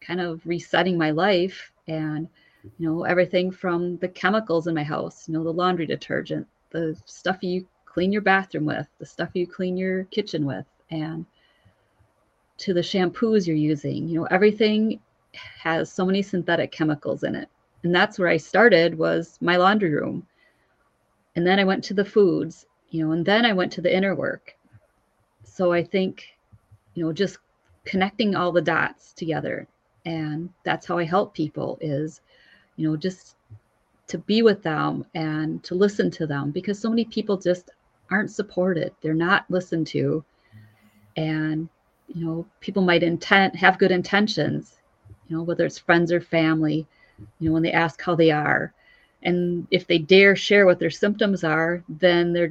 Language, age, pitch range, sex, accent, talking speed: English, 30-49, 160-190 Hz, female, American, 175 wpm